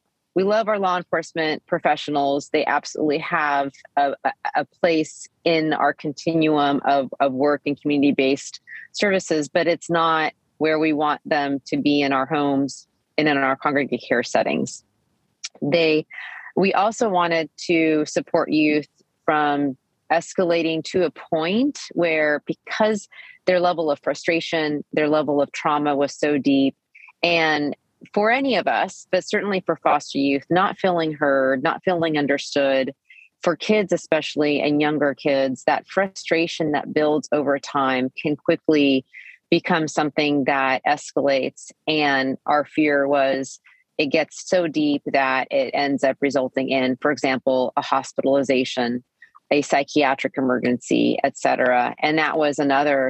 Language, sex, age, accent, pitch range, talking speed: English, female, 30-49, American, 140-165 Hz, 140 wpm